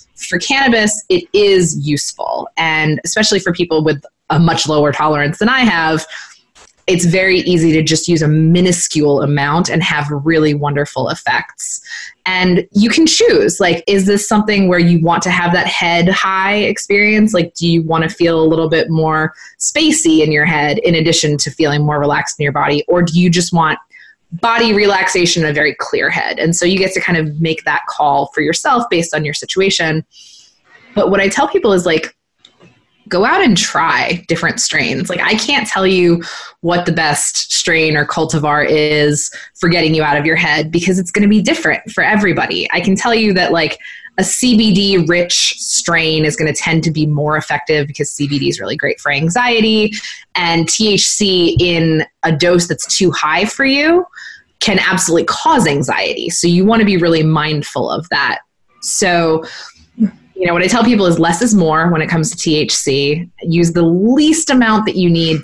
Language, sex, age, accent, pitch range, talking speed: English, female, 20-39, American, 155-200 Hz, 190 wpm